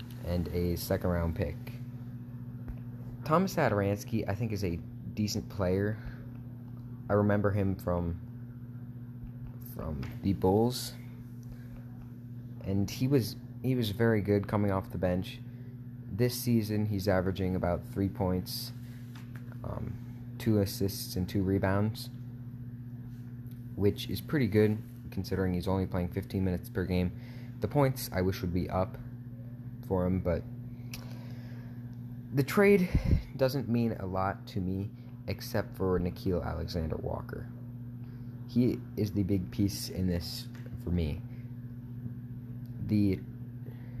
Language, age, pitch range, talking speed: English, 20-39, 100-120 Hz, 115 wpm